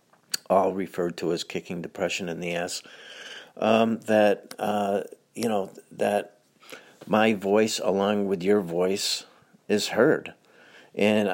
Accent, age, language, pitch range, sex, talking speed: American, 50-69, English, 90-105 Hz, male, 125 wpm